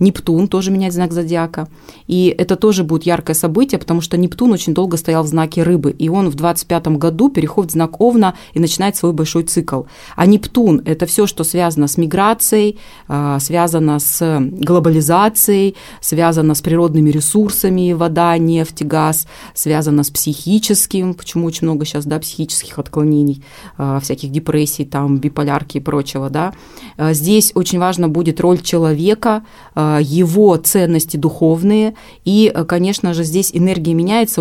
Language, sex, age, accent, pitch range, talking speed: Russian, female, 20-39, native, 155-185 Hz, 150 wpm